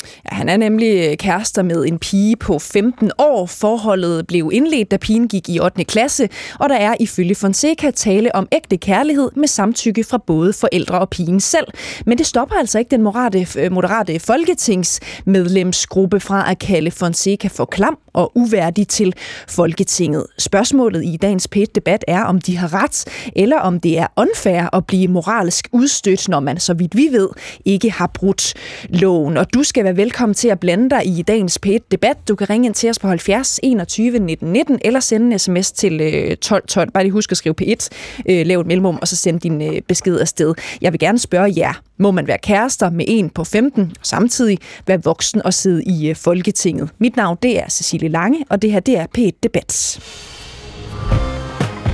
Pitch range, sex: 175-225 Hz, female